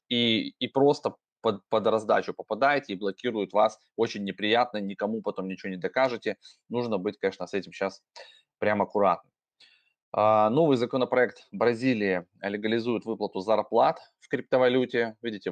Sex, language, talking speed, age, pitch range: male, Russian, 130 wpm, 20-39, 95-120 Hz